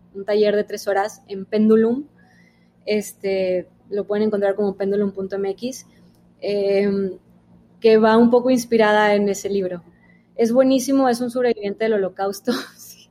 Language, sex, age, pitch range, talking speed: Spanish, female, 20-39, 195-230 Hz, 135 wpm